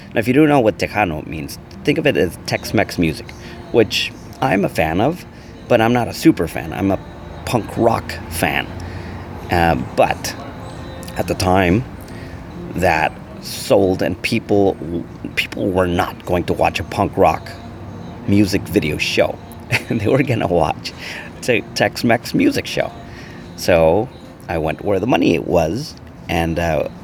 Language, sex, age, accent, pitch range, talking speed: English, male, 40-59, American, 85-115 Hz, 155 wpm